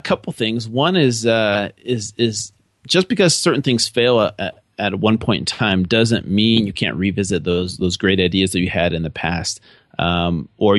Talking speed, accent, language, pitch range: 200 wpm, American, English, 95-120 Hz